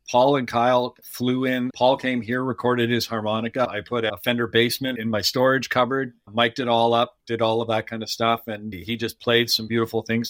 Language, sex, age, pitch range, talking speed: English, male, 50-69, 110-120 Hz, 220 wpm